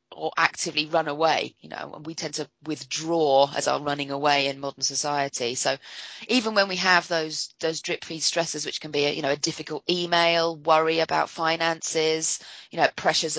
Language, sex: English, female